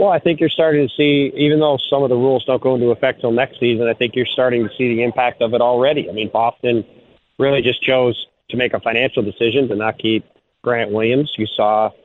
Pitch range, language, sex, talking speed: 120-155 Hz, English, male, 245 wpm